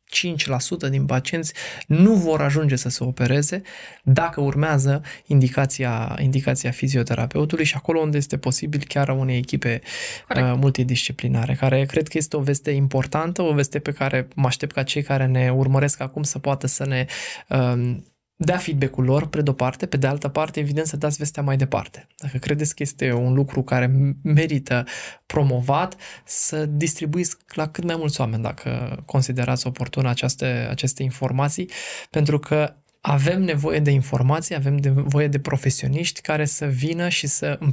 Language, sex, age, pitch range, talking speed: Romanian, male, 20-39, 130-150 Hz, 160 wpm